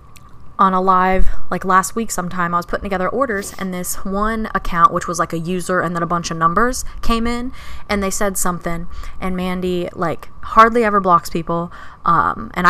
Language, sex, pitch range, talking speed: English, female, 175-225 Hz, 200 wpm